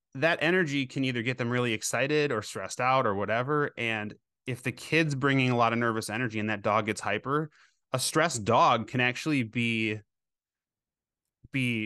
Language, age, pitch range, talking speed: English, 20-39, 110-135 Hz, 175 wpm